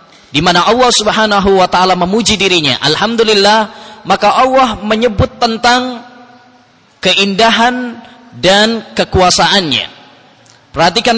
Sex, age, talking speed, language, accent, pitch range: male, 20-39, 85 wpm, English, Indonesian, 135-205 Hz